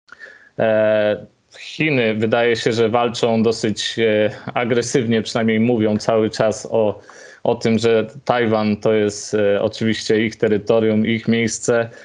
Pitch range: 110-130 Hz